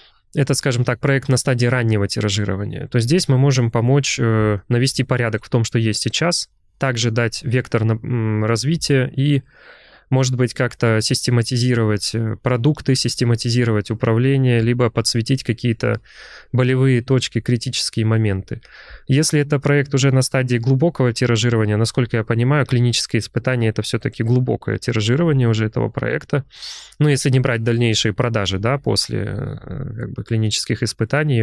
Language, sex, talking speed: Russian, male, 130 wpm